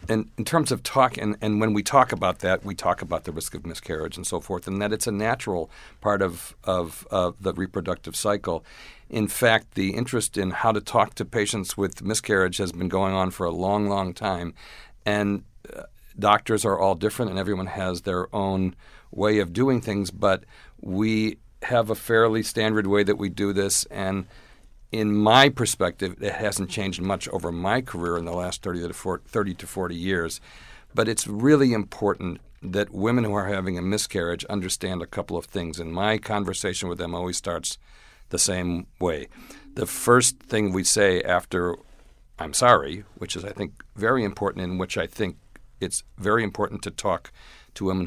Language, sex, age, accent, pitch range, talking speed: English, male, 50-69, American, 90-110 Hz, 190 wpm